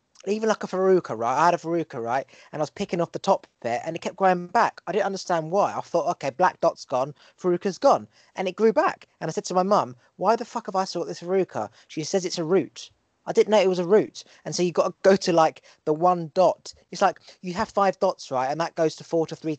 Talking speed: 275 wpm